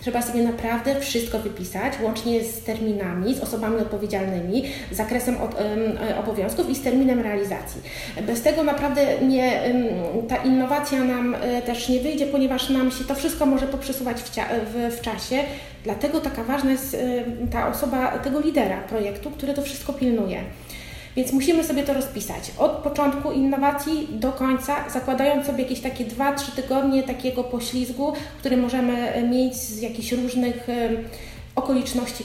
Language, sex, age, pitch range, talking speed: Polish, female, 30-49, 220-275 Hz, 140 wpm